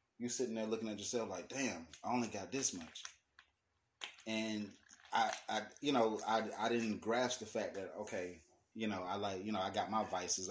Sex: male